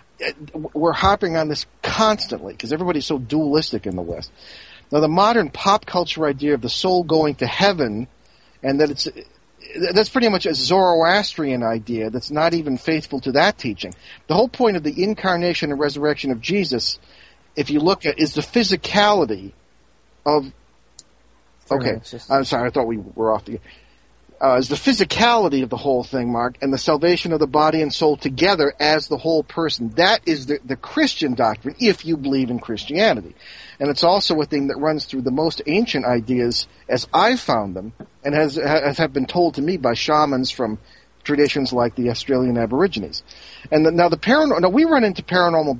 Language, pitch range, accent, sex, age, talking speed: English, 125-175 Hz, American, male, 40-59, 185 wpm